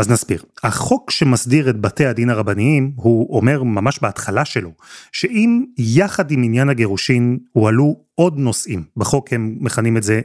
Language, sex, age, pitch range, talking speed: Hebrew, male, 30-49, 120-170 Hz, 150 wpm